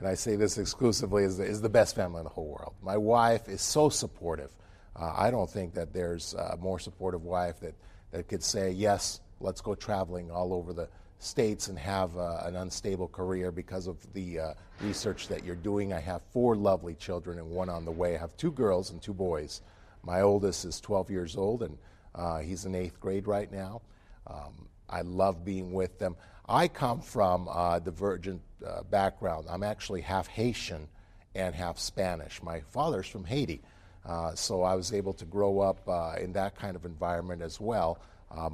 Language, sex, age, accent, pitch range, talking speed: English, male, 50-69, American, 85-100 Hz, 200 wpm